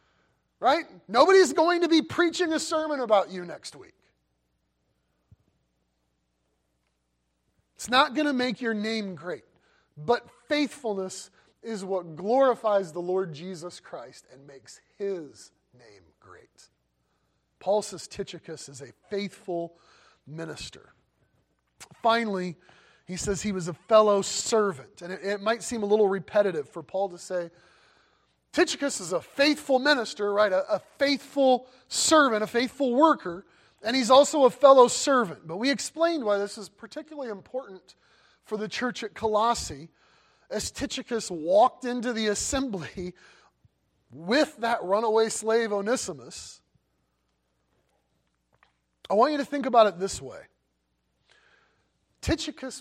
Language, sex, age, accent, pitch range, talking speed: English, male, 30-49, American, 175-255 Hz, 130 wpm